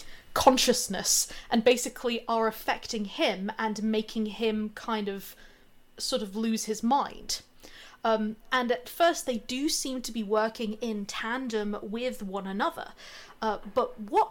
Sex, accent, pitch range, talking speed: female, British, 210-260 Hz, 145 wpm